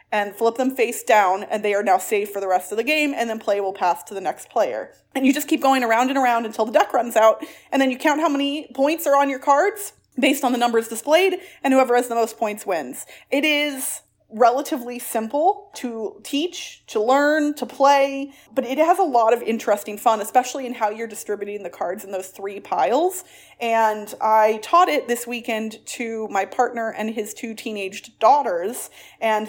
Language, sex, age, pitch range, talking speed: English, female, 30-49, 215-280 Hz, 215 wpm